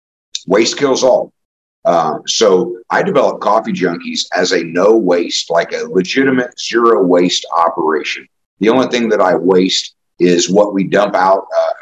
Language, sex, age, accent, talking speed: English, male, 50-69, American, 155 wpm